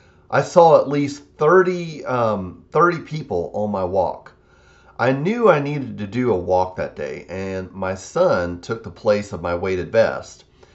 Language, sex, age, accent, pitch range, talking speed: English, male, 40-59, American, 85-120 Hz, 175 wpm